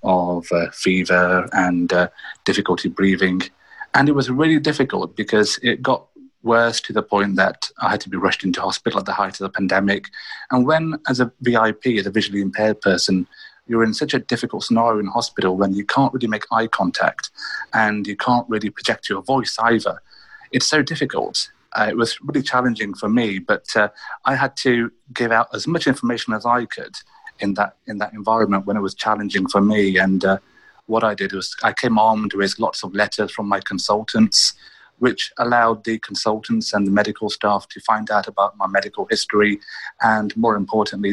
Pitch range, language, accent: 100-125 Hz, English, British